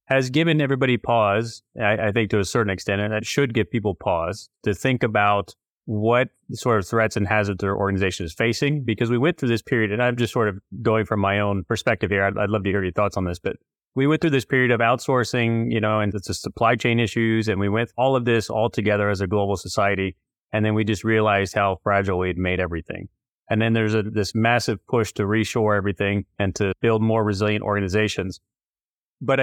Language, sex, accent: English, male, American